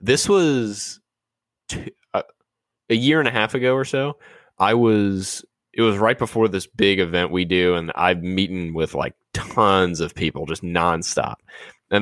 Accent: American